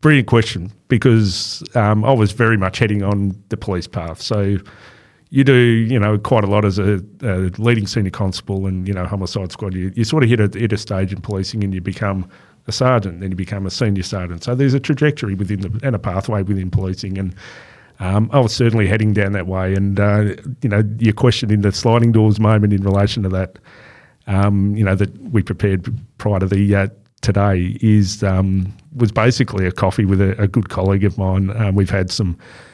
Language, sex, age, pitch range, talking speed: English, male, 40-59, 100-115 Hz, 215 wpm